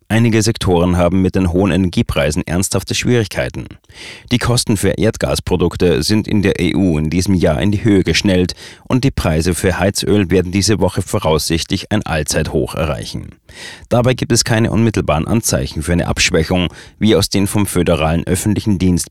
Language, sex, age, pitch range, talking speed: German, male, 30-49, 85-105 Hz, 165 wpm